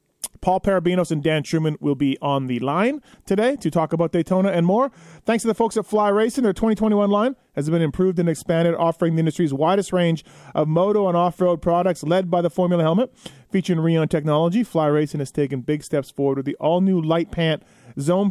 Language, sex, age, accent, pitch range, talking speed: English, male, 30-49, American, 145-180 Hz, 205 wpm